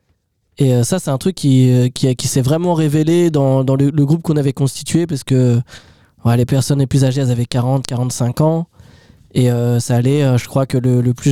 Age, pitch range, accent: 20-39, 130-155 Hz, French